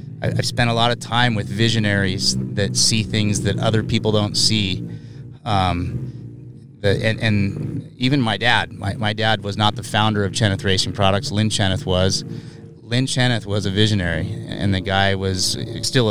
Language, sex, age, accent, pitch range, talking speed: English, male, 30-49, American, 100-120 Hz, 175 wpm